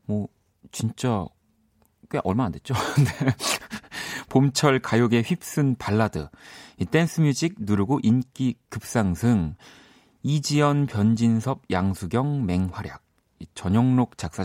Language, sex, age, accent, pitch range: Korean, male, 40-59, native, 95-135 Hz